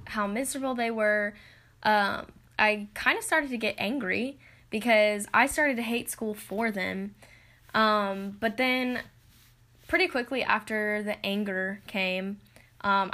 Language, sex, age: English, female, 10-29